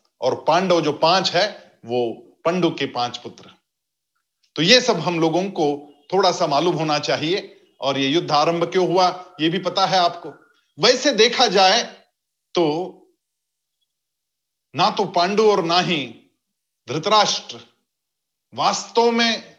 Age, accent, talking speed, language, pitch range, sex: 50-69, native, 140 wpm, Hindi, 175-245 Hz, male